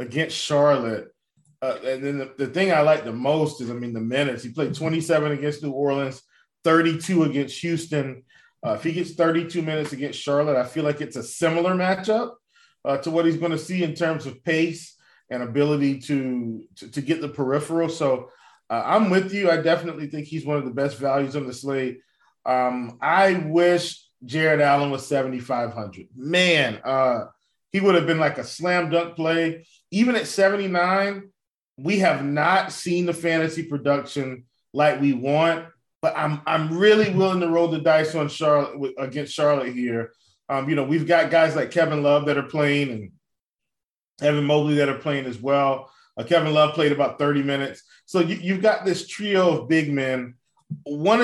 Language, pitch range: English, 140-170 Hz